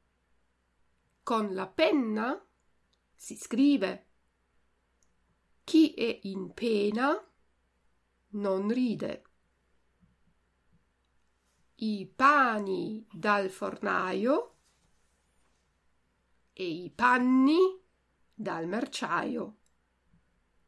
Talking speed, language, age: 60 wpm, Italian, 50-69